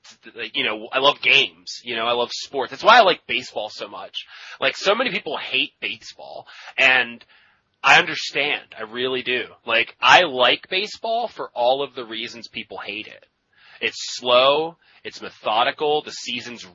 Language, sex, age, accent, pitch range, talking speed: English, male, 20-39, American, 110-135 Hz, 170 wpm